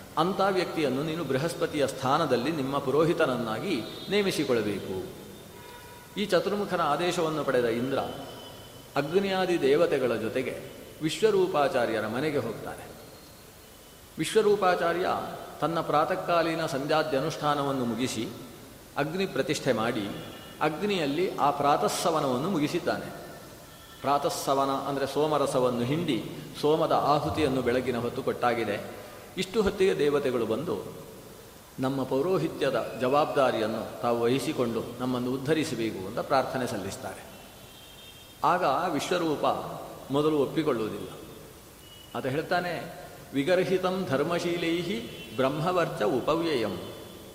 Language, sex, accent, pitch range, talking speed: Kannada, male, native, 130-180 Hz, 80 wpm